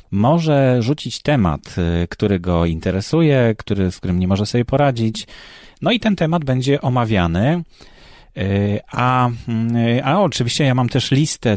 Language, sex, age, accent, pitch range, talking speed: Polish, male, 30-49, native, 95-120 Hz, 135 wpm